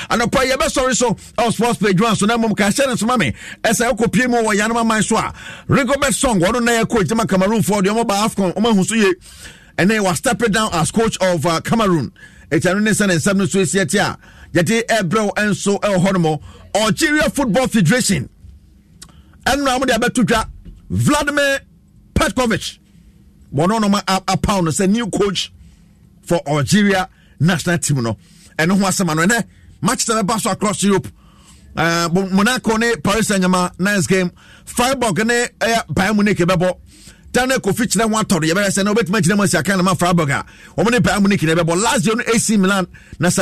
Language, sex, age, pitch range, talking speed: English, male, 50-69, 175-225 Hz, 100 wpm